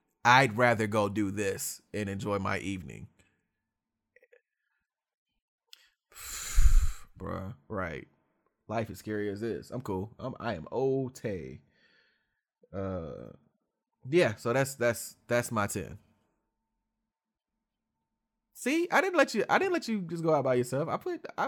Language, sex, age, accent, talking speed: English, male, 20-39, American, 135 wpm